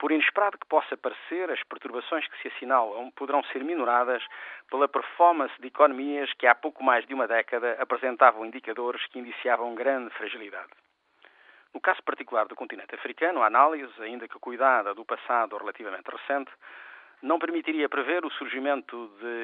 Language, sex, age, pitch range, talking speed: Portuguese, male, 40-59, 120-150 Hz, 155 wpm